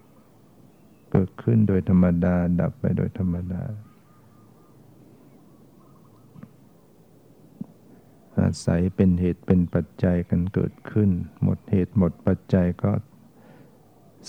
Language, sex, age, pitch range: Thai, male, 60-79, 90-105 Hz